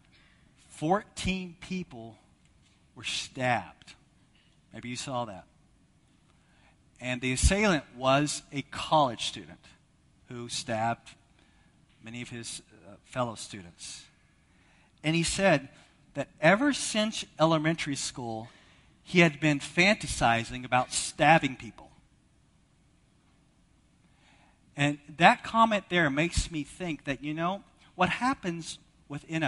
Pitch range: 135-175 Hz